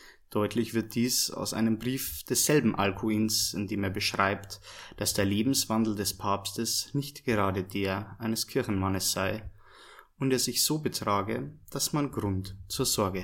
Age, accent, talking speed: 20-39, German, 150 wpm